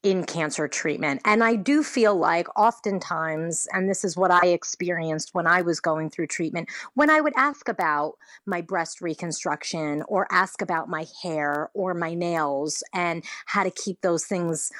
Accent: American